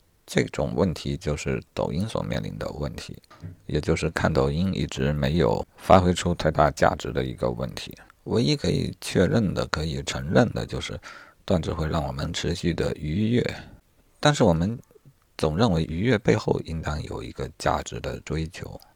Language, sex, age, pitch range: Chinese, male, 50-69, 75-95 Hz